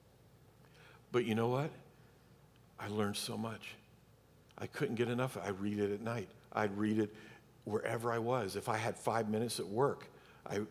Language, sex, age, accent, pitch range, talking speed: English, male, 50-69, American, 115-175 Hz, 175 wpm